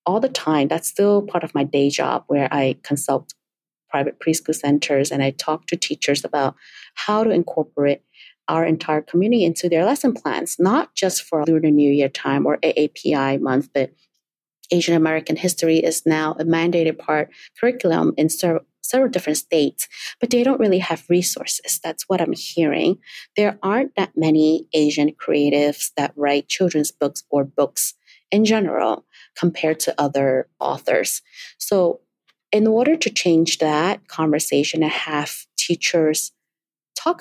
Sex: female